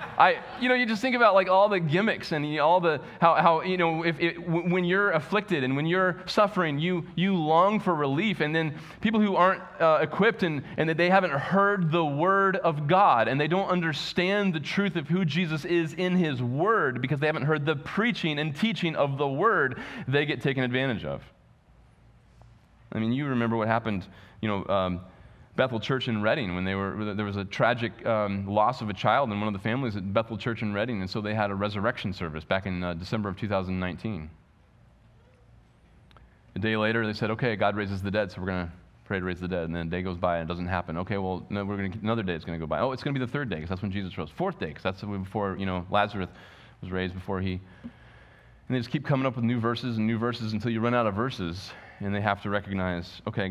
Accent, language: American, English